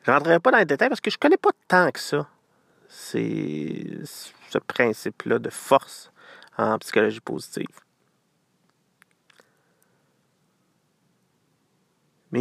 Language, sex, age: French, male, 30-49